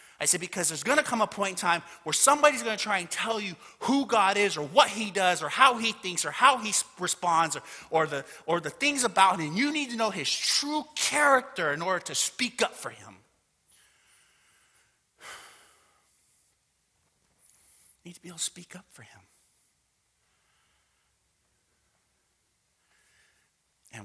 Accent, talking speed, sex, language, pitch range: American, 170 wpm, male, English, 115-195 Hz